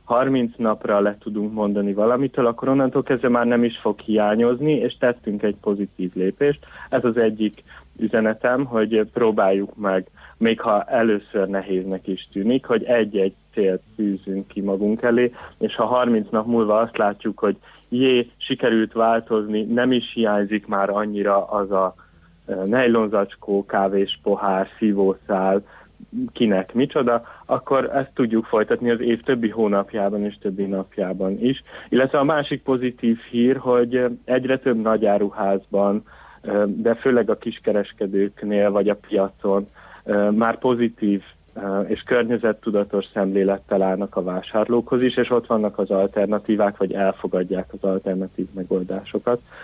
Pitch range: 100-120 Hz